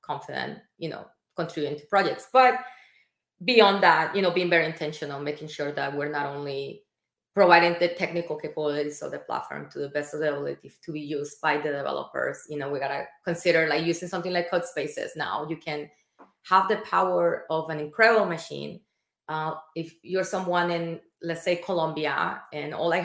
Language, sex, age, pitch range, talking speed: English, female, 20-39, 150-180 Hz, 185 wpm